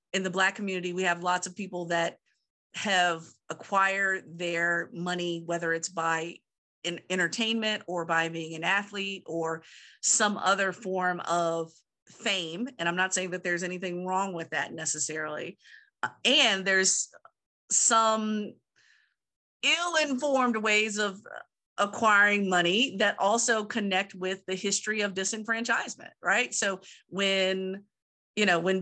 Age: 50-69